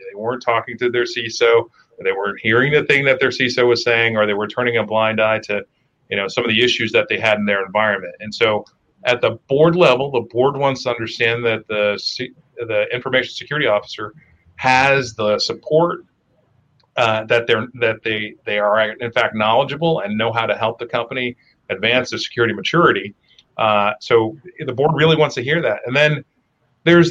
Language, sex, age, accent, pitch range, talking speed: English, male, 40-59, American, 115-150 Hz, 200 wpm